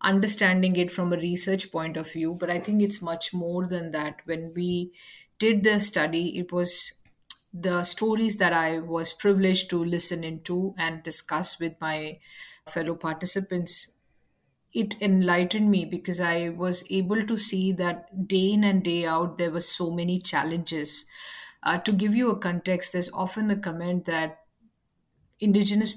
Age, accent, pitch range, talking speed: 50-69, Indian, 170-195 Hz, 160 wpm